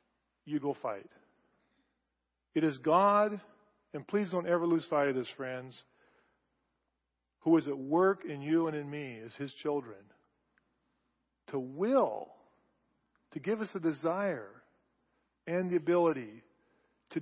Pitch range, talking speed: 140-170 Hz, 130 wpm